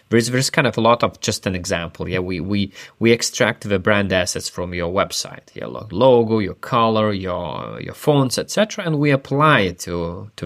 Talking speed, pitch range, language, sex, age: 200 wpm, 95-120 Hz, English, male, 30-49